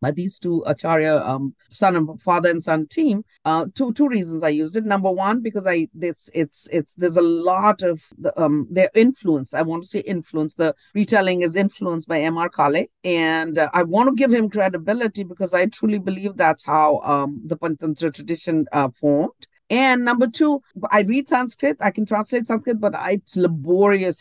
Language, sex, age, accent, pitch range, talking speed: English, female, 50-69, Indian, 170-215 Hz, 195 wpm